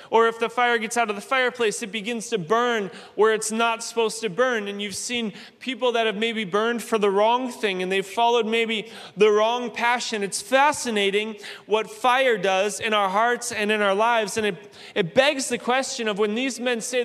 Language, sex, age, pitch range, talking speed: English, male, 20-39, 210-235 Hz, 215 wpm